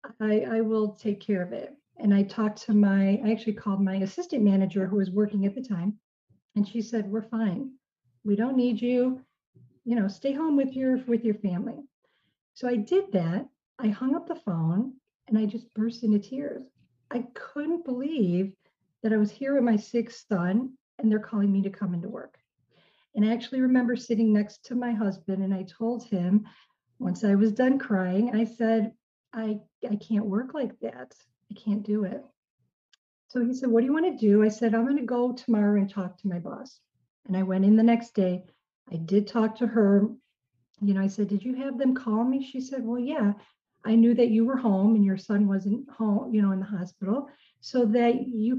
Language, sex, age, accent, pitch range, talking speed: English, female, 40-59, American, 205-245 Hz, 210 wpm